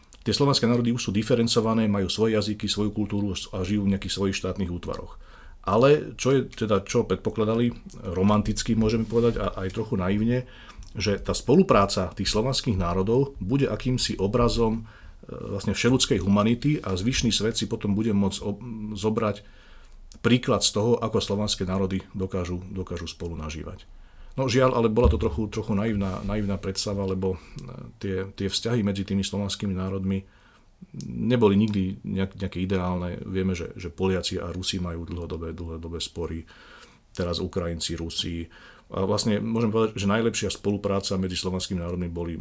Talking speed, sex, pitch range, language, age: 150 wpm, male, 95-115 Hz, Slovak, 40-59